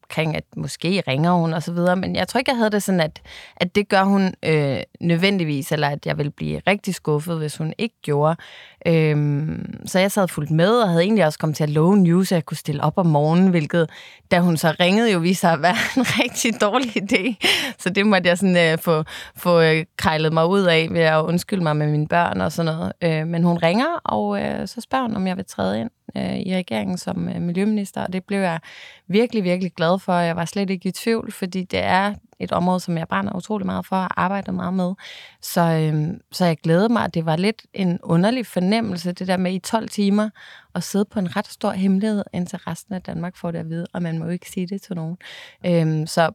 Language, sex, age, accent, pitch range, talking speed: Danish, female, 20-39, native, 165-200 Hz, 235 wpm